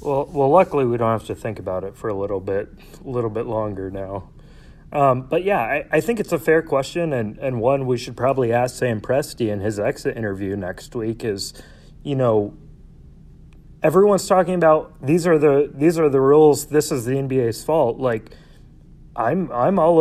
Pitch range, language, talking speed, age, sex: 115-150 Hz, English, 200 wpm, 30-49, male